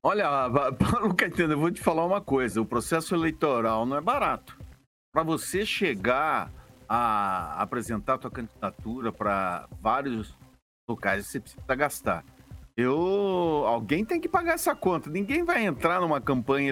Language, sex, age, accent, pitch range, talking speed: Portuguese, male, 60-79, Brazilian, 125-200 Hz, 145 wpm